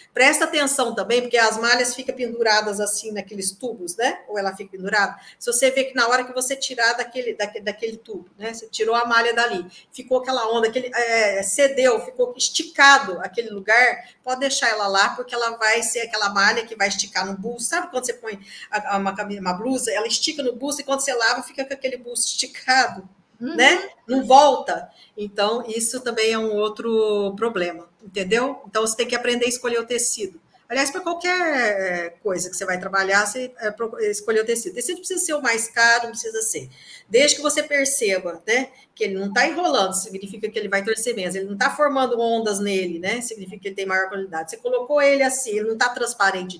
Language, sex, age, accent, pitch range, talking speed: Portuguese, female, 50-69, Brazilian, 210-270 Hz, 205 wpm